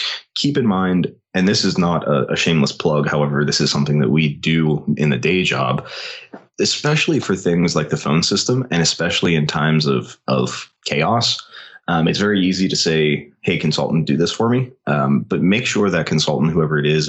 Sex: male